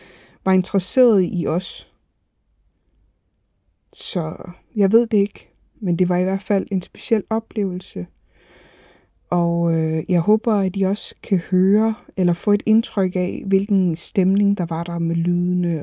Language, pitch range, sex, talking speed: Danish, 165-200 Hz, female, 145 wpm